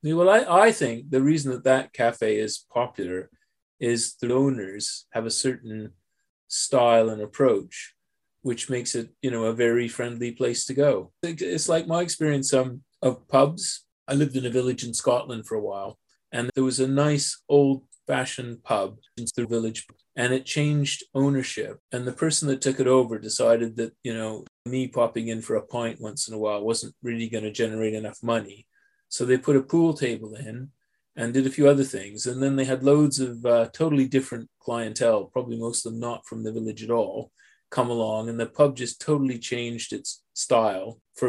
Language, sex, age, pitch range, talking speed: English, male, 30-49, 115-135 Hz, 195 wpm